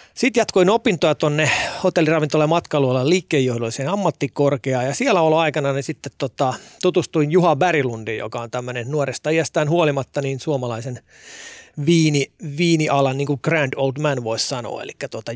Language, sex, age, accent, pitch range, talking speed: Finnish, male, 30-49, native, 130-160 Hz, 145 wpm